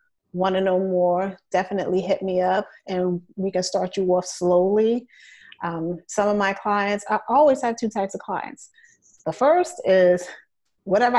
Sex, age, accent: female, 30-49, American